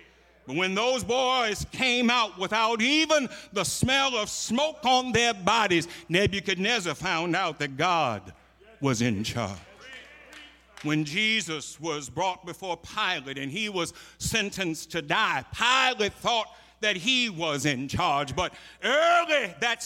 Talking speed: 135 wpm